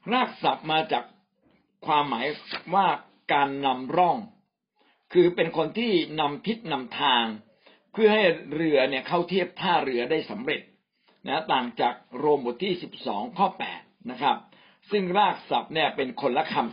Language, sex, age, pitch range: Thai, male, 60-79, 135-195 Hz